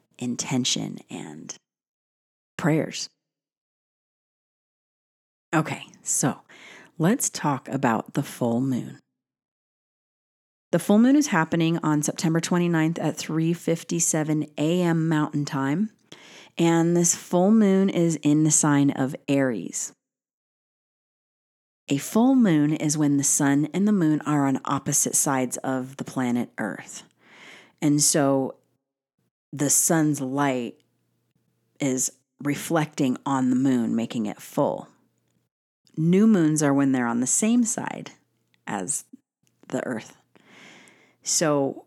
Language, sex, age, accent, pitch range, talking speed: English, female, 40-59, American, 135-170 Hz, 110 wpm